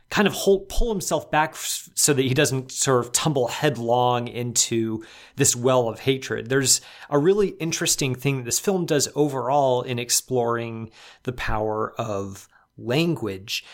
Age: 30-49